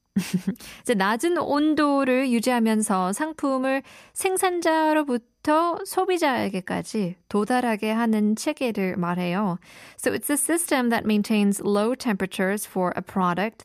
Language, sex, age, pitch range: Korean, female, 20-39, 185-265 Hz